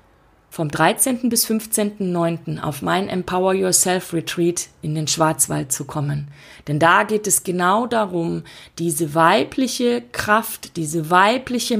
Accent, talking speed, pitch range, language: German, 125 wpm, 155-210 Hz, German